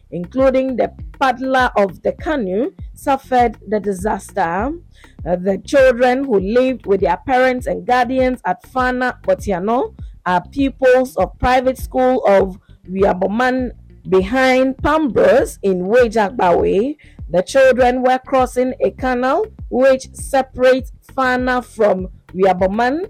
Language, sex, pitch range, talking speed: English, female, 200-260 Hz, 115 wpm